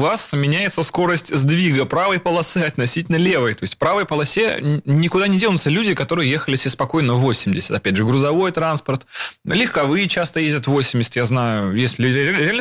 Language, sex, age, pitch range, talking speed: Russian, male, 20-39, 125-165 Hz, 160 wpm